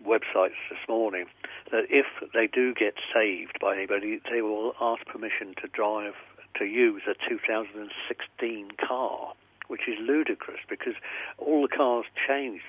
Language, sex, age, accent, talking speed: English, male, 50-69, British, 140 wpm